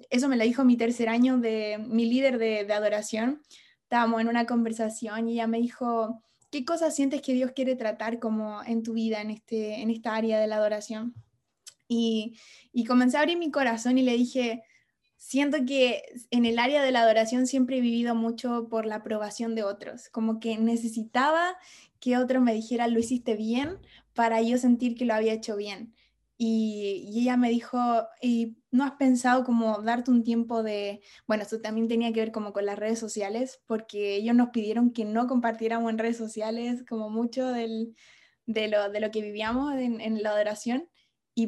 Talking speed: 190 wpm